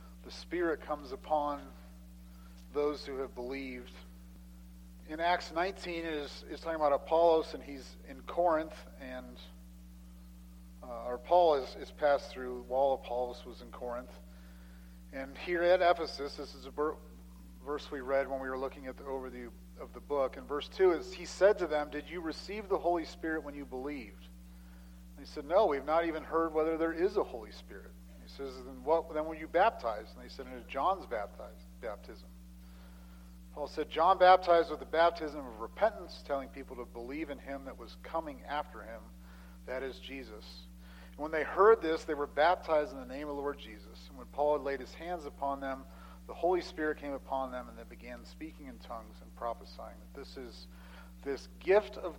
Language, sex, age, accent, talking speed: English, male, 40-59, American, 195 wpm